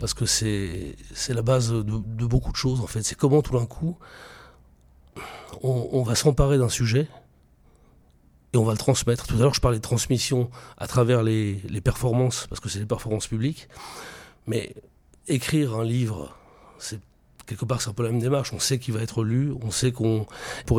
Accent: French